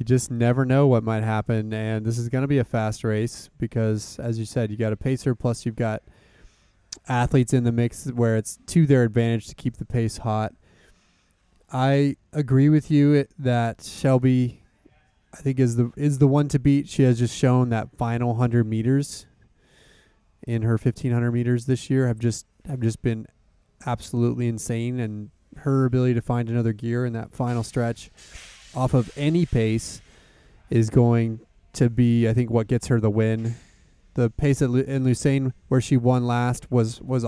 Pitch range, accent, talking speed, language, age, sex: 115-135 Hz, American, 185 wpm, English, 20-39, male